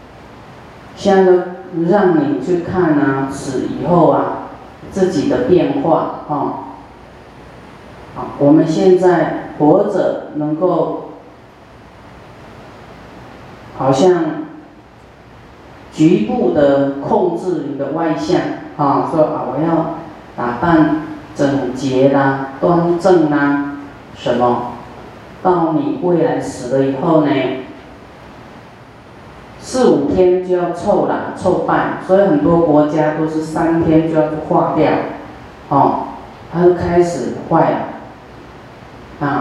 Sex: female